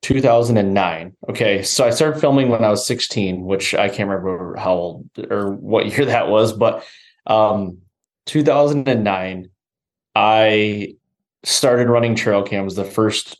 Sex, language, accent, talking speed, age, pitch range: male, English, American, 140 wpm, 20-39, 100-120 Hz